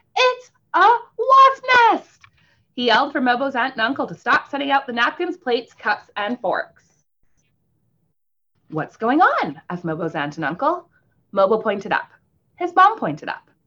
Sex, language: female, English